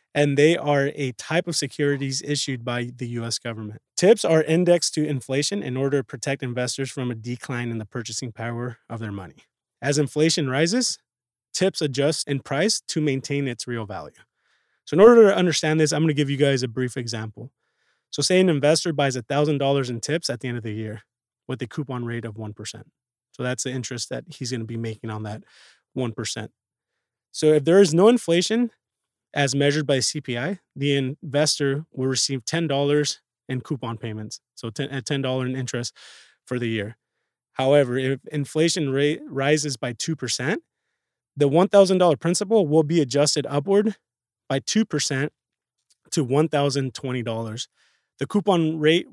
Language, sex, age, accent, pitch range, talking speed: English, male, 20-39, American, 125-155 Hz, 170 wpm